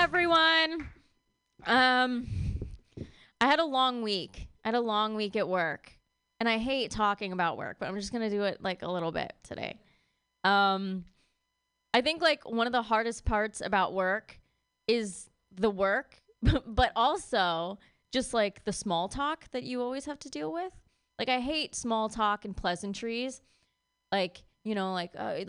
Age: 20-39